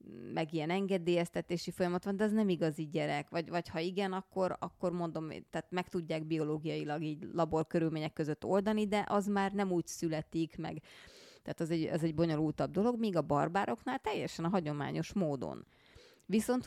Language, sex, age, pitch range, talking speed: Hungarian, female, 30-49, 160-185 Hz, 170 wpm